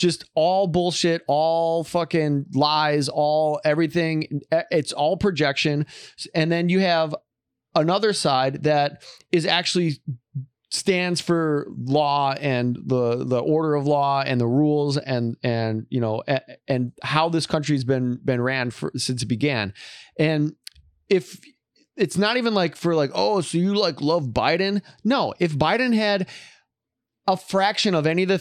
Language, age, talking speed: English, 30-49, 150 wpm